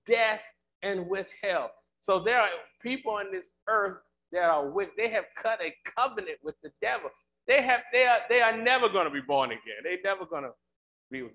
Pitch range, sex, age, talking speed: 130-215 Hz, male, 50-69, 210 wpm